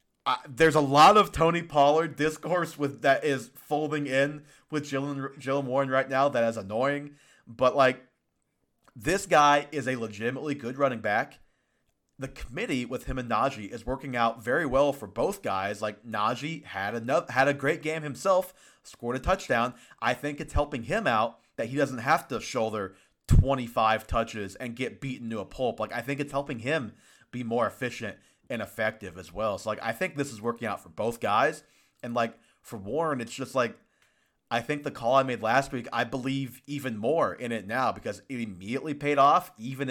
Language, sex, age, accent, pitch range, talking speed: English, male, 30-49, American, 115-140 Hz, 195 wpm